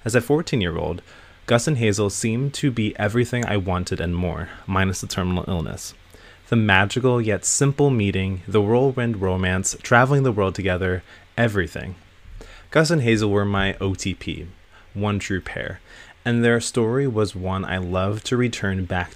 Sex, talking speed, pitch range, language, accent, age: male, 165 wpm, 90-115 Hz, English, American, 20-39